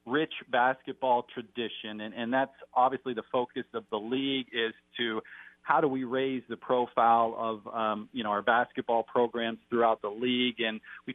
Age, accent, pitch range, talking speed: 40-59, American, 110-125 Hz, 170 wpm